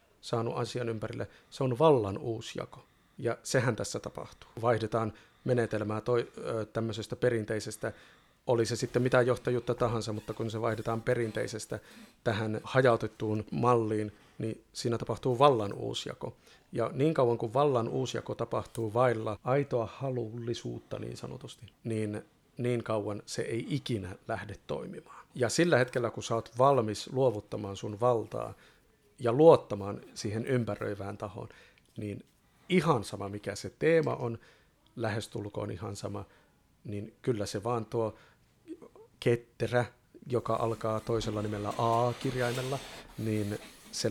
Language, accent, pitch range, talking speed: Finnish, native, 110-125 Hz, 130 wpm